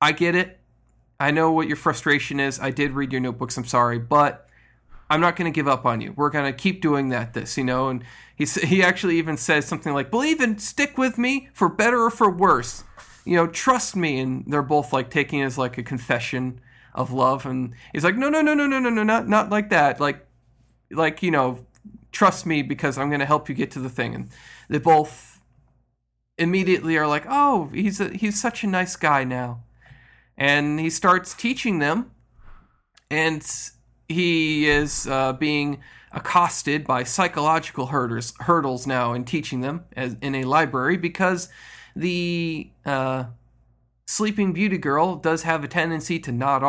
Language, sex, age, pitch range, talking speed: English, male, 40-59, 130-175 Hz, 190 wpm